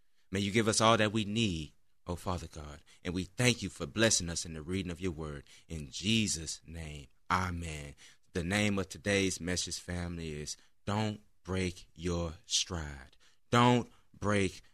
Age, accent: 20-39, American